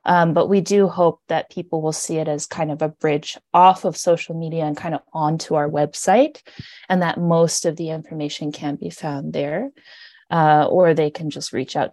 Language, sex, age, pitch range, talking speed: English, female, 20-39, 155-185 Hz, 210 wpm